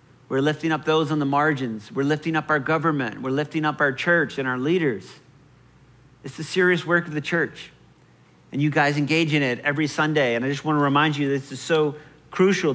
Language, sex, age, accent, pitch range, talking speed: English, male, 50-69, American, 140-170 Hz, 215 wpm